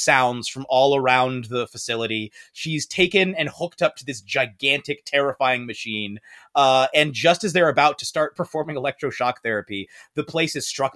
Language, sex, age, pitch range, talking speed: English, male, 30-49, 145-230 Hz, 170 wpm